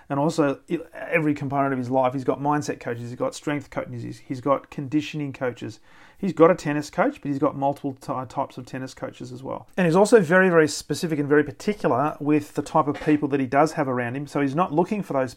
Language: English